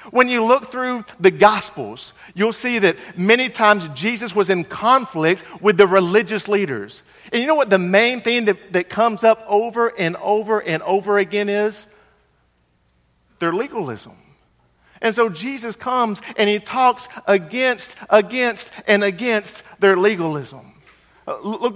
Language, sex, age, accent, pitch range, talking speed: English, male, 50-69, American, 190-245 Hz, 145 wpm